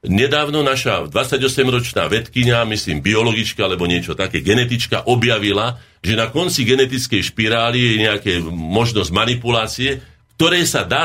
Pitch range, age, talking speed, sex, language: 100-135 Hz, 50-69, 125 wpm, male, Slovak